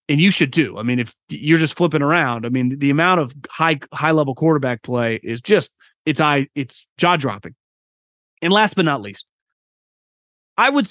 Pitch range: 125-160 Hz